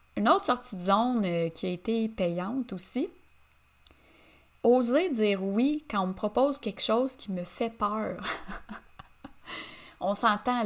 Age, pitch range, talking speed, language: 30-49, 185-265 Hz, 140 wpm, French